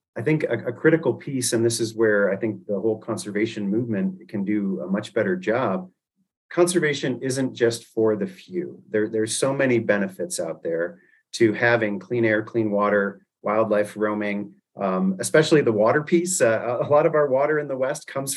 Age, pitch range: 40-59, 110-145 Hz